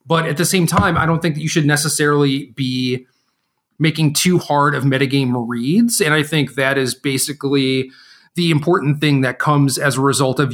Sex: male